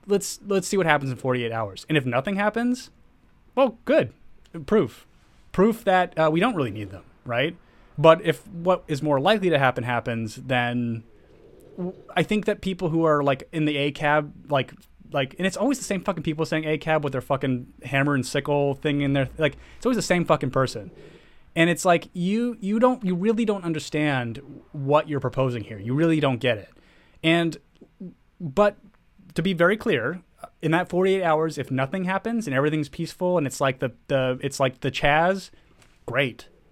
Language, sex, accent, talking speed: English, male, American, 195 wpm